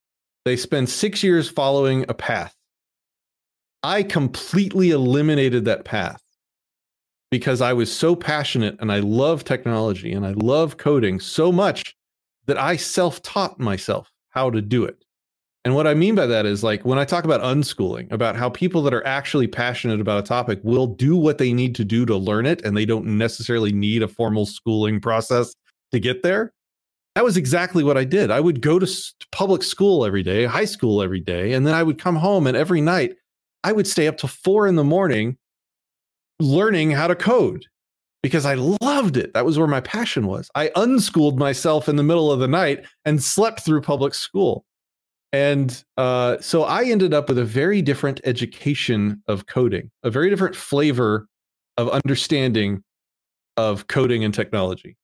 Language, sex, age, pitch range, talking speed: English, male, 30-49, 115-165 Hz, 180 wpm